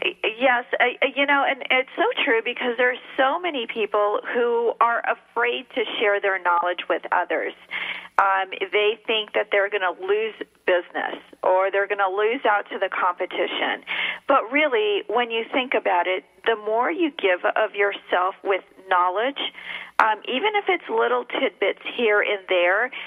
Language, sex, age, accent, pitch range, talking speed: English, female, 40-59, American, 200-275 Hz, 165 wpm